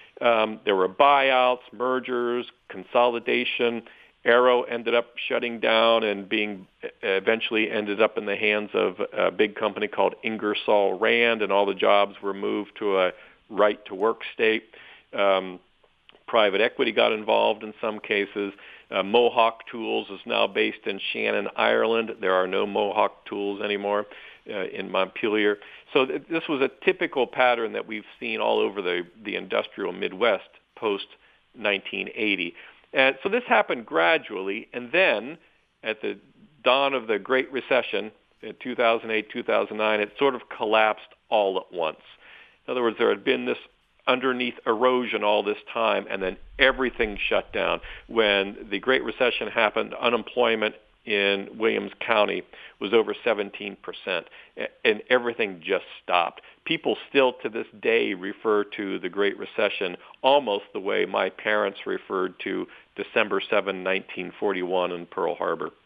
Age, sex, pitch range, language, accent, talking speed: 50-69, male, 105-140 Hz, English, American, 145 wpm